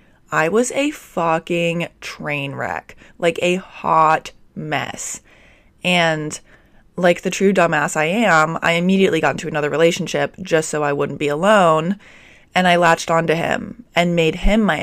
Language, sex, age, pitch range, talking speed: English, female, 20-39, 155-185 Hz, 155 wpm